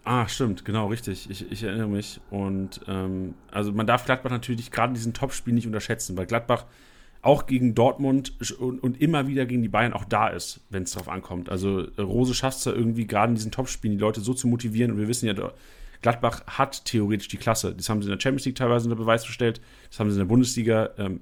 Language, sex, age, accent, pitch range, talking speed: German, male, 40-59, German, 105-125 Hz, 230 wpm